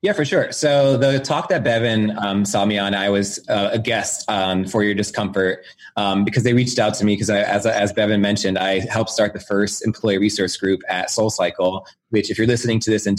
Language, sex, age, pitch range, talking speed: English, male, 20-39, 100-120 Hz, 225 wpm